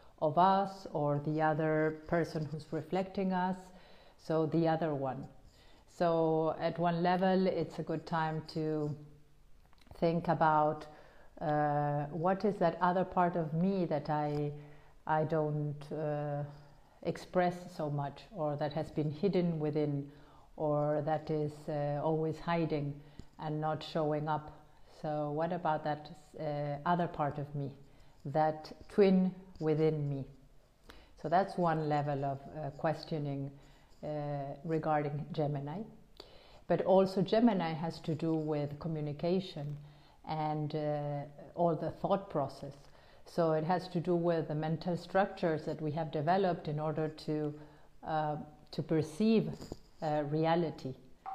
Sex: female